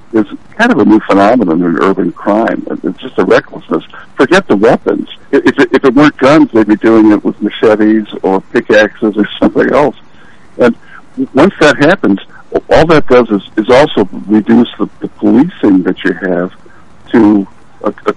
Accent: American